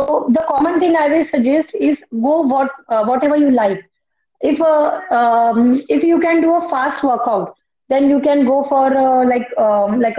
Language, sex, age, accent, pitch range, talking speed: English, female, 20-39, Indian, 245-290 Hz, 195 wpm